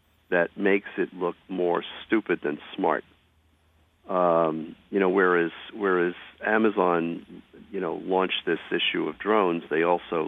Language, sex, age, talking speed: English, male, 50-69, 135 wpm